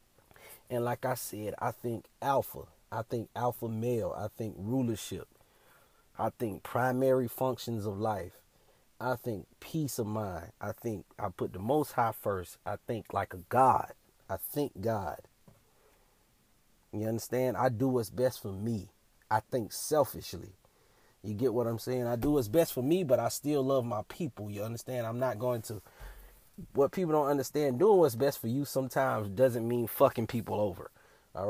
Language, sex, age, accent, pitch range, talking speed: English, male, 30-49, American, 110-130 Hz, 175 wpm